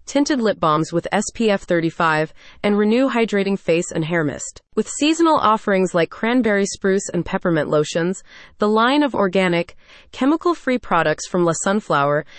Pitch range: 170-230 Hz